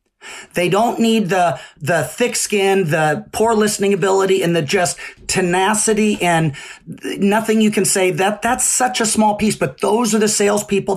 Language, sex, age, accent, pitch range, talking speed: English, male, 40-59, American, 170-210 Hz, 170 wpm